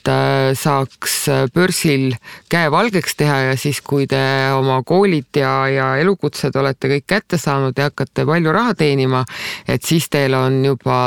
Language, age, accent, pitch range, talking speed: English, 50-69, Finnish, 130-150 Hz, 150 wpm